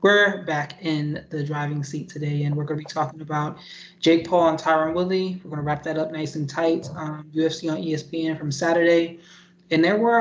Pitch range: 150-175 Hz